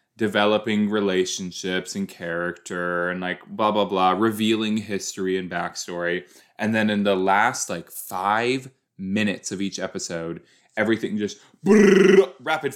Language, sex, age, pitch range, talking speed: English, male, 20-39, 95-130 Hz, 125 wpm